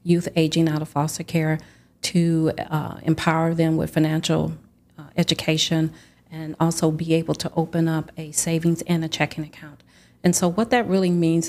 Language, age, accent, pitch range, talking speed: English, 40-59, American, 155-170 Hz, 170 wpm